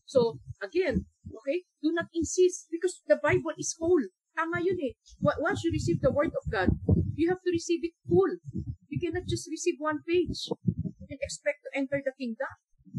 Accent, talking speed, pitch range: native, 185 wpm, 205-325 Hz